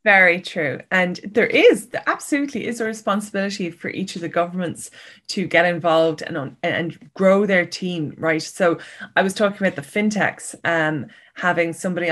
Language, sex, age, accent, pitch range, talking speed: English, female, 20-39, Irish, 160-205 Hz, 175 wpm